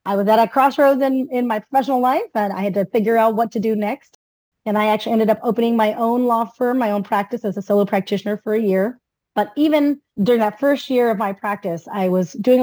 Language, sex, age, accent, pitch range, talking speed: English, female, 30-49, American, 195-245 Hz, 245 wpm